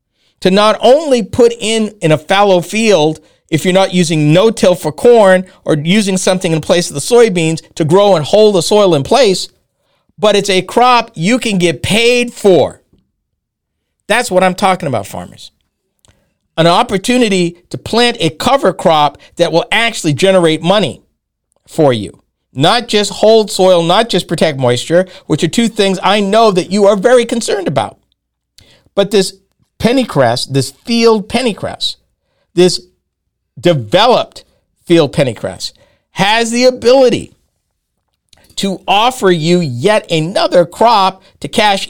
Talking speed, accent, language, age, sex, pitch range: 145 wpm, American, English, 50-69, male, 165-225 Hz